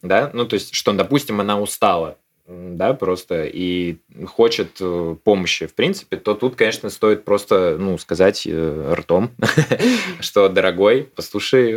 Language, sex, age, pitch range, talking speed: Russian, male, 20-39, 95-120 Hz, 140 wpm